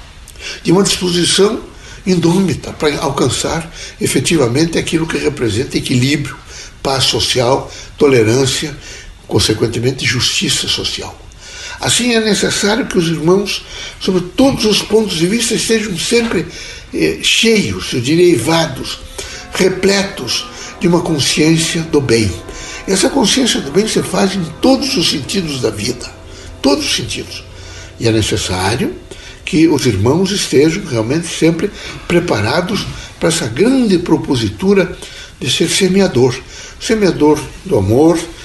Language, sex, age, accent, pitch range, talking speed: Portuguese, male, 60-79, Brazilian, 120-185 Hz, 120 wpm